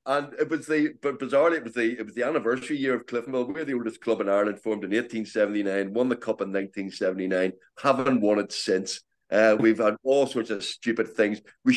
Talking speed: 225 wpm